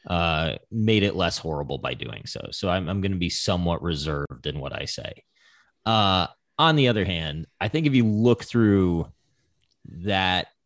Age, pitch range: 30-49, 80-110 Hz